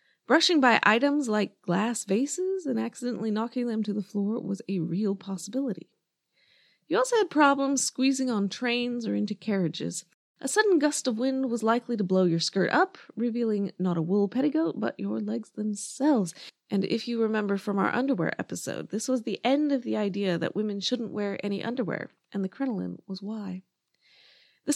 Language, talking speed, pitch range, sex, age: English, 180 wpm, 200-275 Hz, female, 20-39